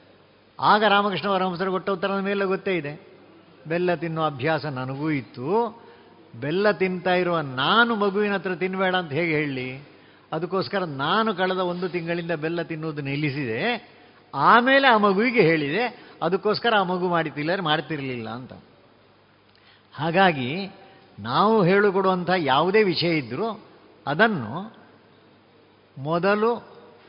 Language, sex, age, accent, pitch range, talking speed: Kannada, male, 50-69, native, 155-205 Hz, 115 wpm